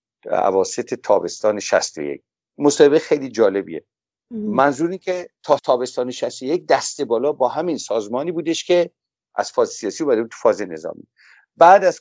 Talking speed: 135 wpm